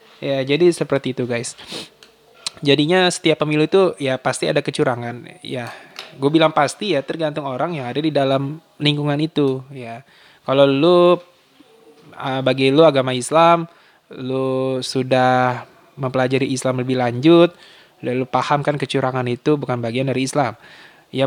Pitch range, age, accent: 130-165 Hz, 20-39, native